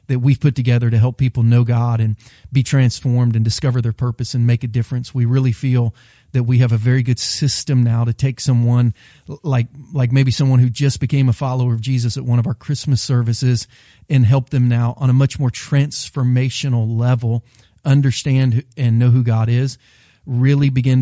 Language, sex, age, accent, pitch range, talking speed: English, male, 40-59, American, 120-140 Hz, 195 wpm